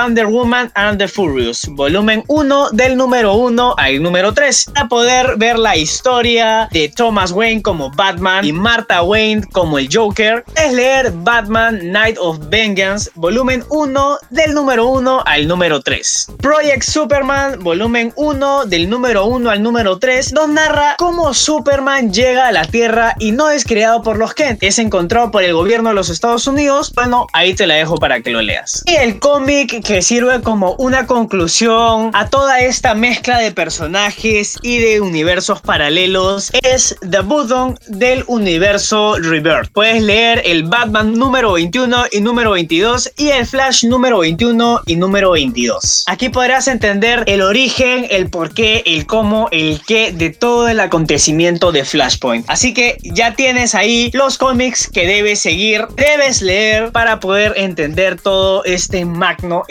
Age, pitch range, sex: 20-39, 195-255 Hz, male